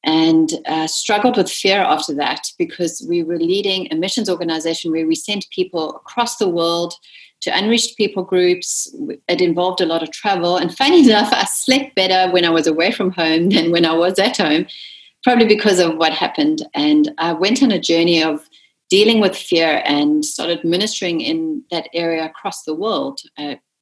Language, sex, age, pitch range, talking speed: English, female, 30-49, 165-215 Hz, 185 wpm